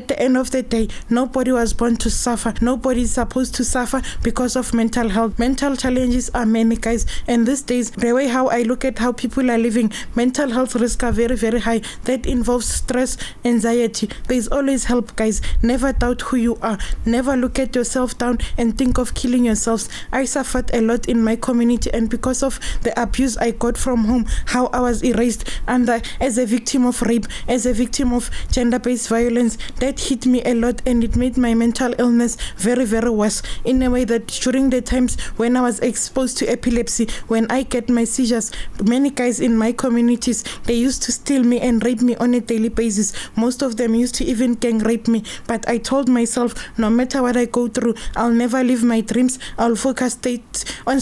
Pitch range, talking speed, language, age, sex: 235-255 Hz, 210 wpm, English, 20-39, female